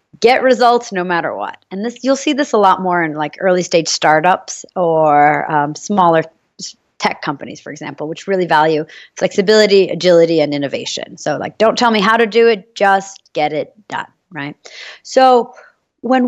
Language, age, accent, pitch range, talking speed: English, 30-49, American, 160-220 Hz, 175 wpm